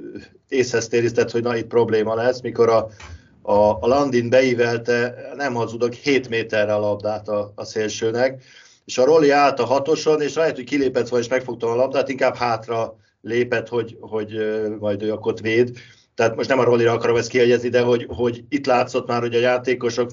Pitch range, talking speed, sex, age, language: 110-125 Hz, 185 wpm, male, 50-69, Hungarian